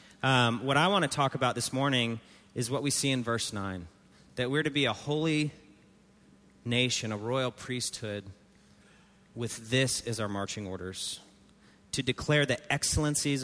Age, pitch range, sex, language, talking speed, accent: 30-49, 105-135 Hz, male, English, 160 wpm, American